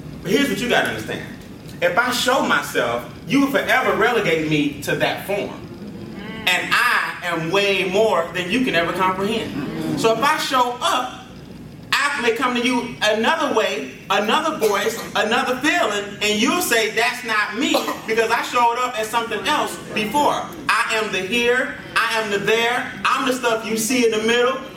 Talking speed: 180 wpm